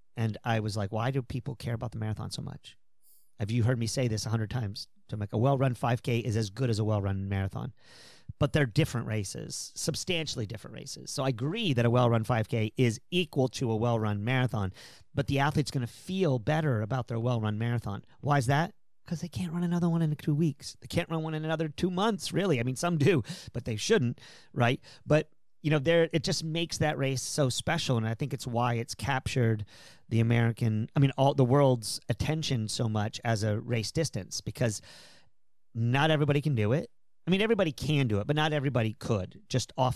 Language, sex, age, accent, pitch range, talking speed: English, male, 40-59, American, 115-150 Hz, 220 wpm